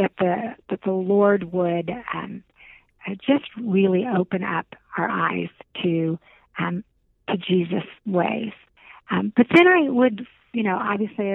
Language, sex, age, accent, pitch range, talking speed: English, female, 50-69, American, 180-220 Hz, 125 wpm